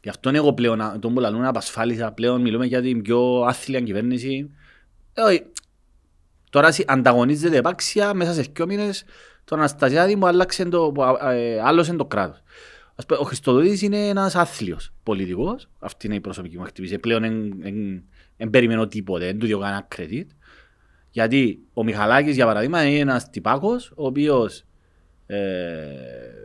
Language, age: Greek, 30-49